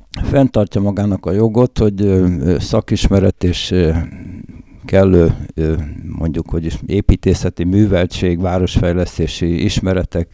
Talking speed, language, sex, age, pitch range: 80 wpm, Hungarian, male, 60-79, 90-105 Hz